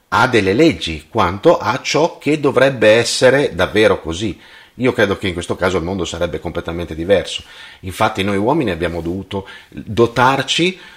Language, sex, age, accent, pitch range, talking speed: Italian, male, 30-49, native, 85-120 Hz, 155 wpm